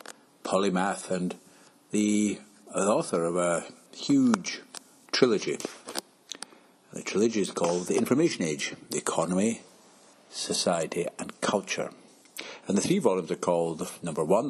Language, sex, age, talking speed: English, male, 60-79, 120 wpm